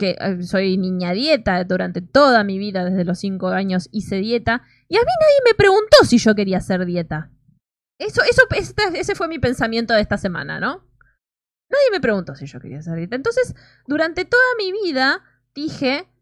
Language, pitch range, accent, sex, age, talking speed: Spanish, 190-315 Hz, Argentinian, female, 20-39, 185 wpm